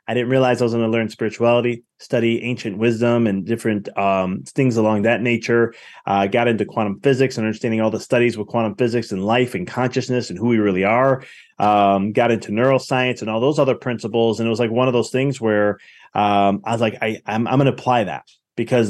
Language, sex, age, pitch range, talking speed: English, male, 20-39, 115-135 Hz, 230 wpm